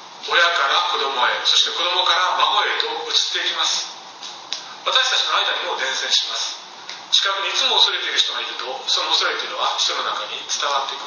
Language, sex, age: Japanese, male, 40-59